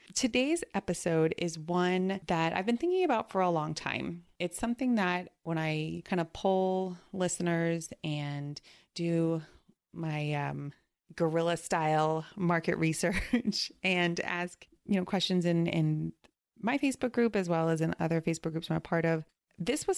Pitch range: 160-210 Hz